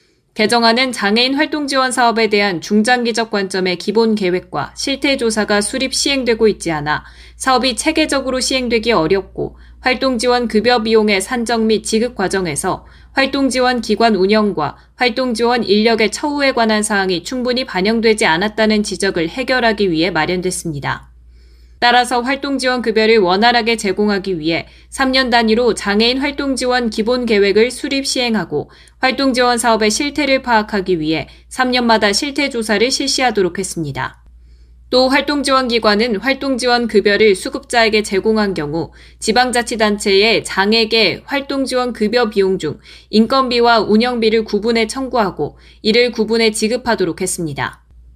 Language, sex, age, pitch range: Korean, female, 20-39, 195-250 Hz